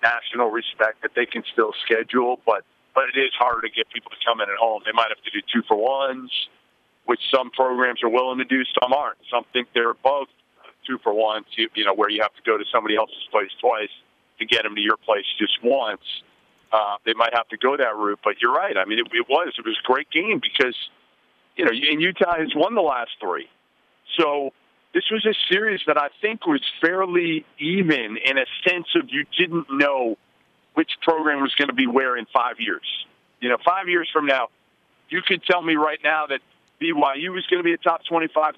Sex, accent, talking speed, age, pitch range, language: male, American, 225 wpm, 50-69, 125-170 Hz, English